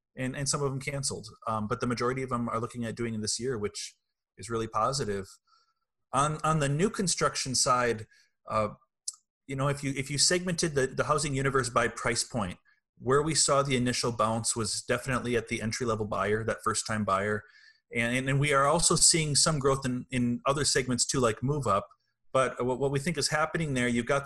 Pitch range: 110-140 Hz